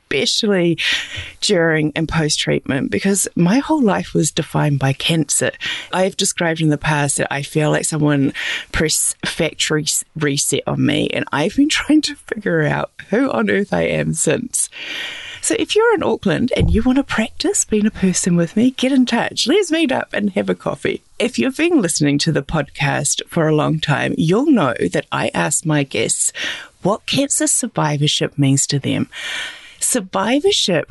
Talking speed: 175 wpm